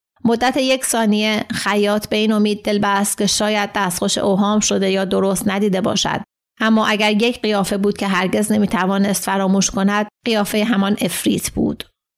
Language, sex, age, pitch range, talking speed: Persian, female, 30-49, 185-215 Hz, 155 wpm